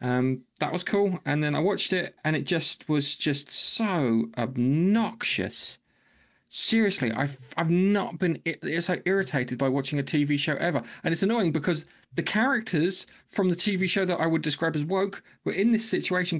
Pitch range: 130-185 Hz